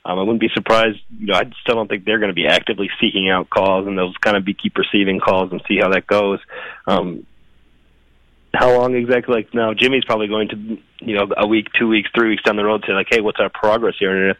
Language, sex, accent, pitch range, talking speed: English, male, American, 95-115 Hz, 265 wpm